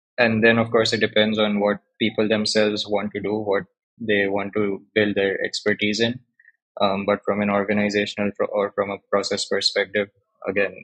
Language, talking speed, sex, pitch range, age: Urdu, 185 wpm, male, 100-110 Hz, 20-39